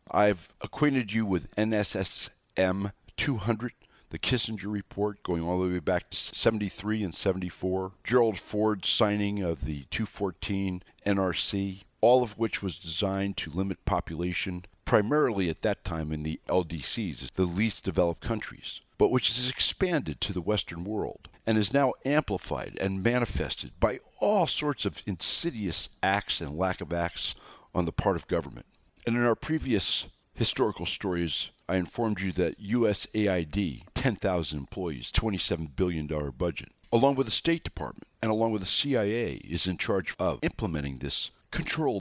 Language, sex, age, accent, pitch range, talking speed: English, male, 50-69, American, 85-110 Hz, 150 wpm